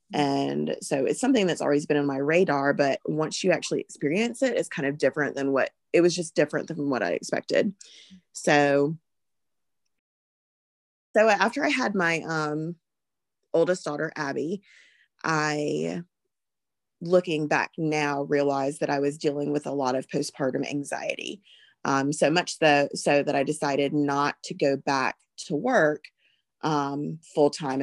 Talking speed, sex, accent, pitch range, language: 150 wpm, female, American, 140-155 Hz, English